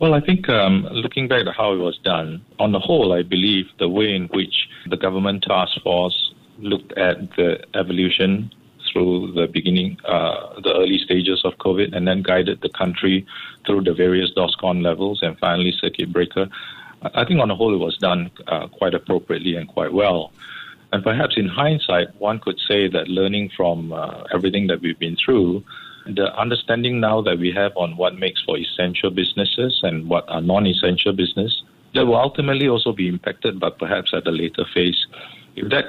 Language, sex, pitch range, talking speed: English, male, 90-100 Hz, 185 wpm